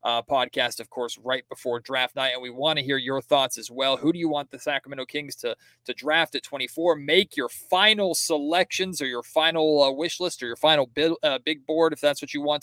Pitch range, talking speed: 135-170 Hz, 240 wpm